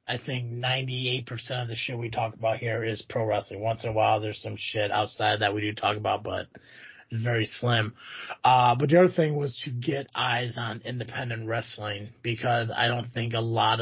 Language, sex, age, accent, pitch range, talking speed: English, male, 30-49, American, 110-135 Hz, 210 wpm